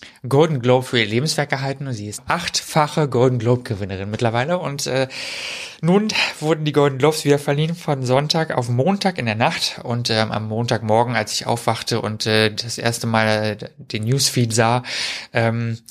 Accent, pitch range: German, 110-130 Hz